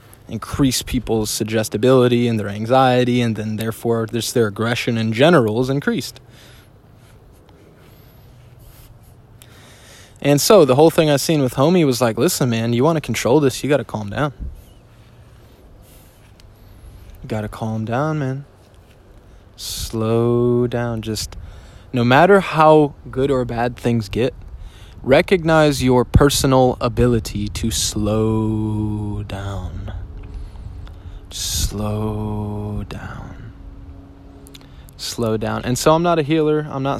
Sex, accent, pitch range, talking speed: male, American, 100-125 Hz, 120 wpm